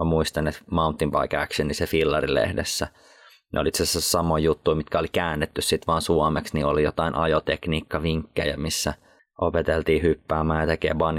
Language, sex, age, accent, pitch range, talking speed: Finnish, male, 20-39, native, 80-95 Hz, 155 wpm